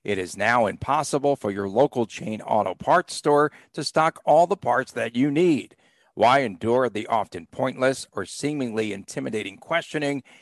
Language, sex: English, male